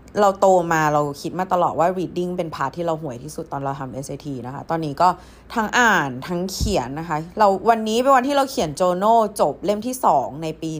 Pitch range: 170-245 Hz